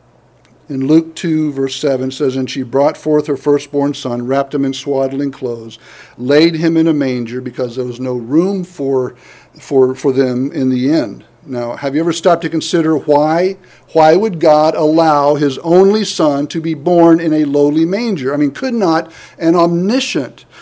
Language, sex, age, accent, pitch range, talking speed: English, male, 50-69, American, 130-190 Hz, 185 wpm